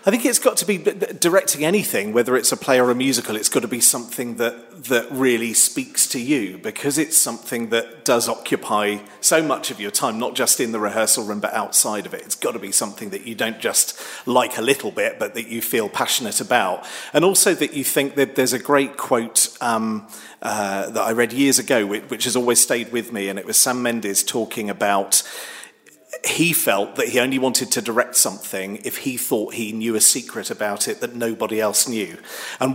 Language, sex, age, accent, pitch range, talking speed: English, male, 40-59, British, 115-150 Hz, 220 wpm